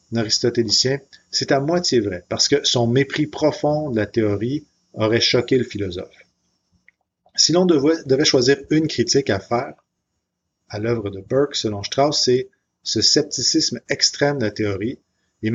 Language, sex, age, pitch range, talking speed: French, male, 40-59, 105-130 Hz, 150 wpm